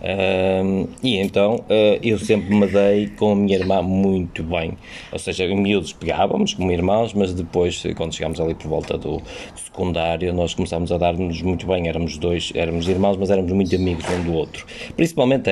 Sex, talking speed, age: male, 190 wpm, 20-39